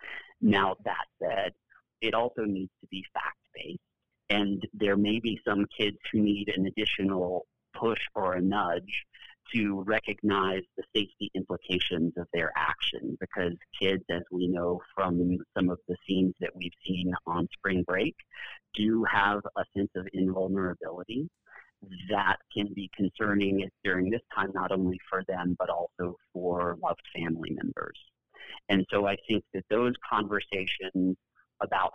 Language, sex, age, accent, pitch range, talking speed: English, male, 40-59, American, 90-100 Hz, 145 wpm